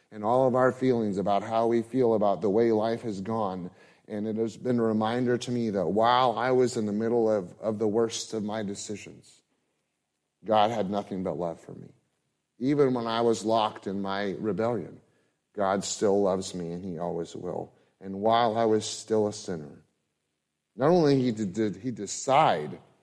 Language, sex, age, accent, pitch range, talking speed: English, male, 30-49, American, 95-120 Hz, 190 wpm